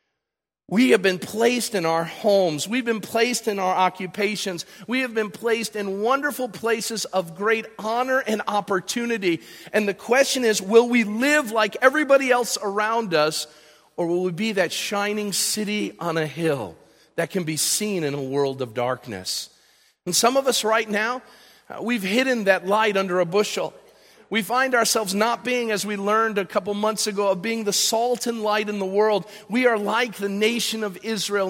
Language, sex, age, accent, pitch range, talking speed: English, male, 50-69, American, 160-220 Hz, 185 wpm